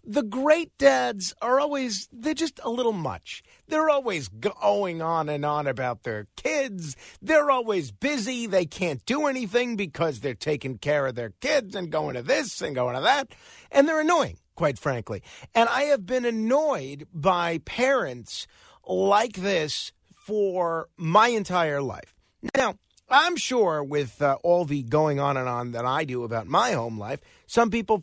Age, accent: 50-69, American